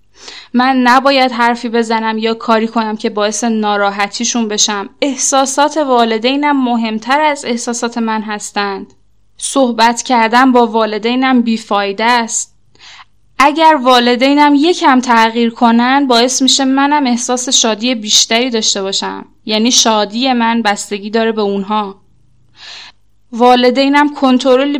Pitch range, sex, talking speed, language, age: 215-260 Hz, female, 110 wpm, Persian, 10-29